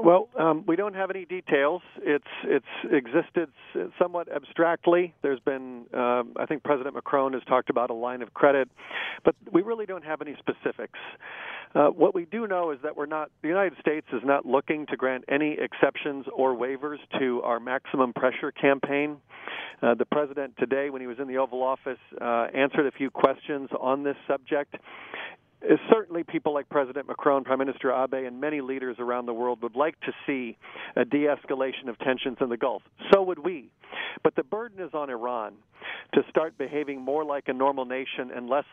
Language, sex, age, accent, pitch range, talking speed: English, male, 40-59, American, 130-155 Hz, 190 wpm